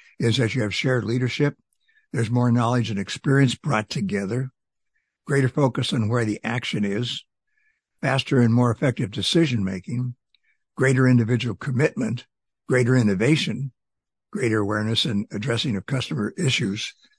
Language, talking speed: English, 130 wpm